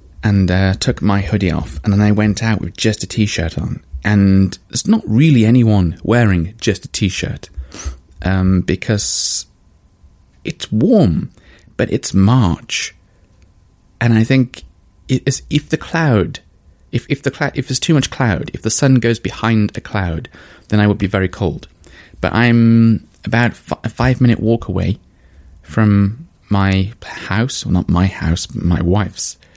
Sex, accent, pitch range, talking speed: male, British, 85-110 Hz, 160 wpm